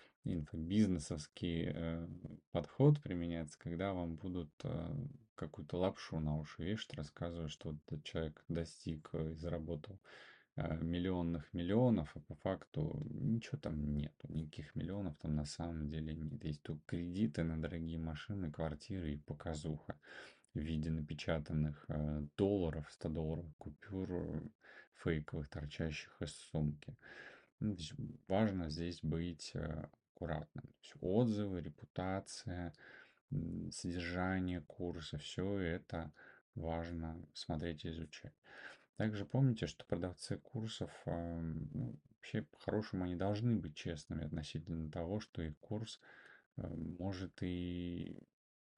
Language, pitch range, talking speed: Russian, 80-95 Hz, 115 wpm